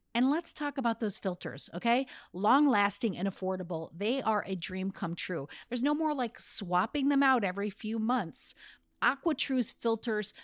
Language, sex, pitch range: English, female, 185-250 Hz